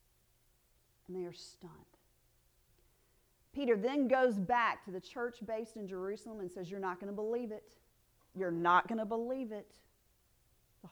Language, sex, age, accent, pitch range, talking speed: English, female, 40-59, American, 185-280 Hz, 160 wpm